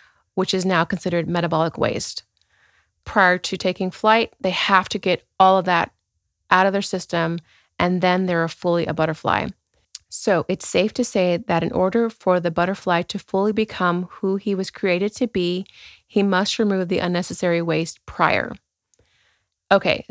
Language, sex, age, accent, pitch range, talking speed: English, female, 30-49, American, 175-200 Hz, 165 wpm